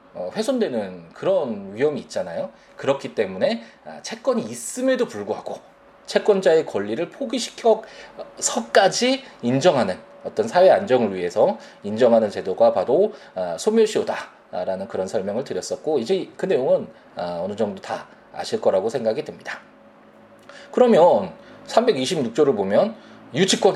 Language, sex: Korean, male